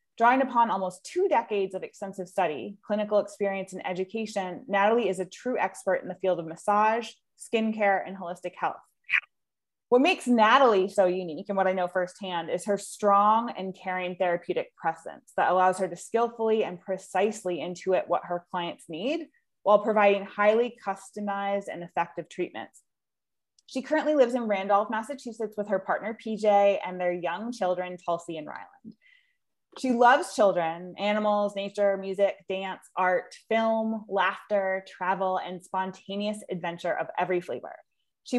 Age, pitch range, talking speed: 20-39, 180-215 Hz, 150 wpm